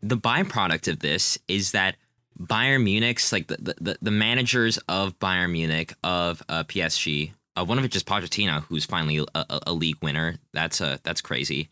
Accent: American